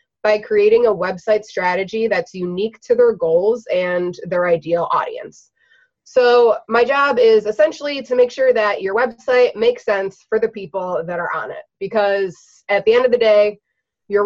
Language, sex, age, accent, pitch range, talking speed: English, female, 20-39, American, 180-235 Hz, 175 wpm